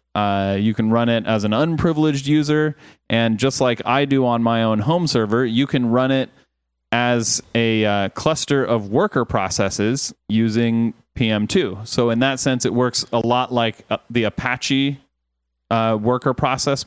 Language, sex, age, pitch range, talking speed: English, male, 30-49, 105-125 Hz, 165 wpm